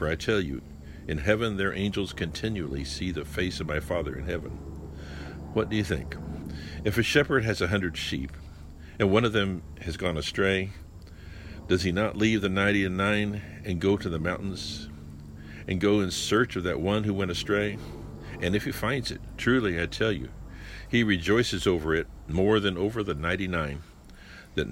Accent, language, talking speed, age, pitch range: American, English, 185 wpm, 60-79, 80-105 Hz